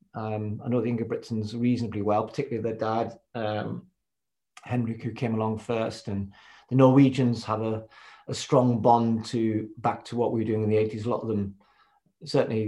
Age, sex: 40-59, male